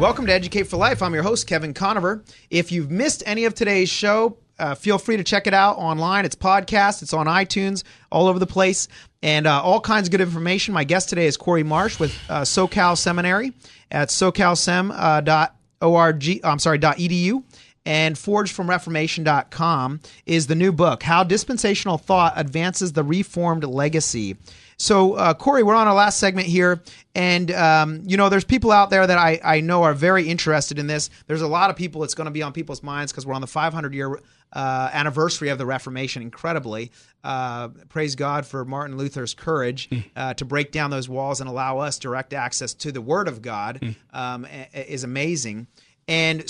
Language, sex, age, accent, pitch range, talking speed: English, male, 30-49, American, 140-185 Hz, 190 wpm